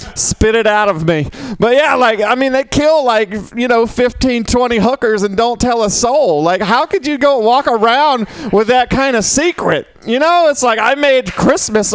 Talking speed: 210 wpm